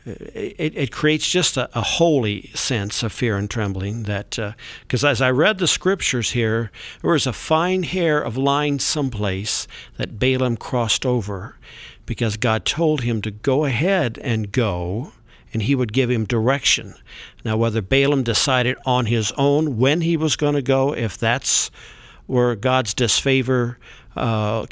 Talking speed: 165 wpm